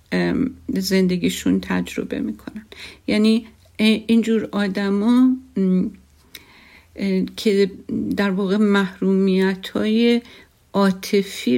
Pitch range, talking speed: 185-220 Hz, 60 wpm